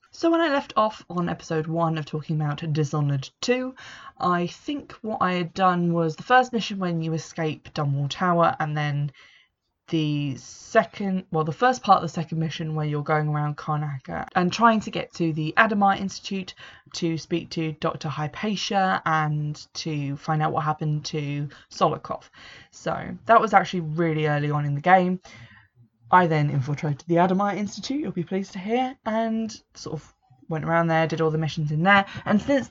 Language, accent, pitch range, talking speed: English, British, 150-185 Hz, 185 wpm